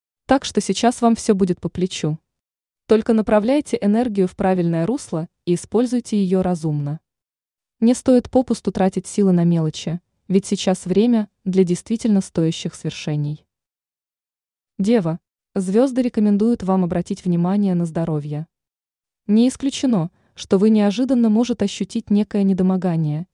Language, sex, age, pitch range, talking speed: Russian, female, 20-39, 170-215 Hz, 125 wpm